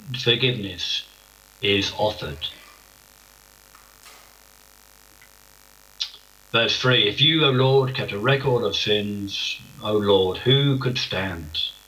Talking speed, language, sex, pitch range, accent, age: 95 wpm, English, male, 105-135 Hz, British, 60-79